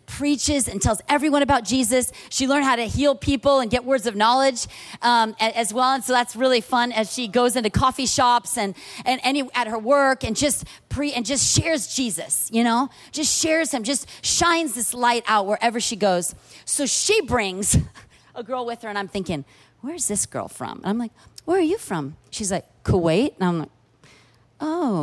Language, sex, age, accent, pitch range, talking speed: English, female, 40-59, American, 220-305 Hz, 205 wpm